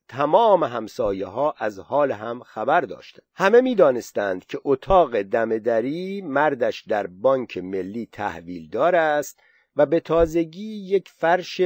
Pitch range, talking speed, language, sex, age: 130-190 Hz, 135 wpm, Persian, male, 50-69